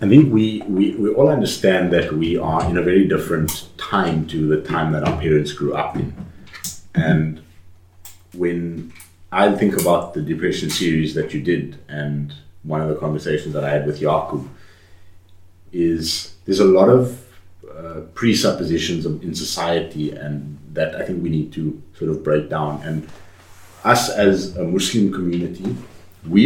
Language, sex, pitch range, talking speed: English, male, 80-95 Hz, 165 wpm